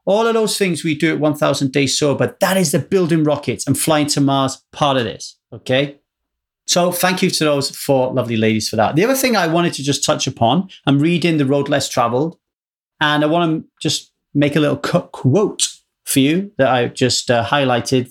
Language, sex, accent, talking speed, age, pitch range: English, male, British, 220 wpm, 30-49, 135-175 Hz